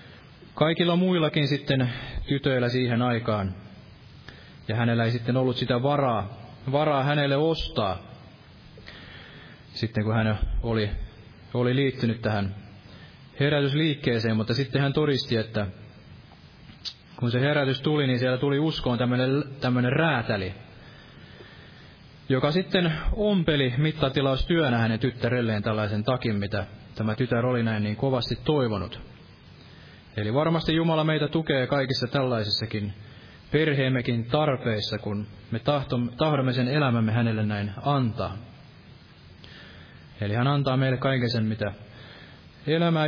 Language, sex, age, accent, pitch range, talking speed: Finnish, male, 20-39, native, 110-140 Hz, 110 wpm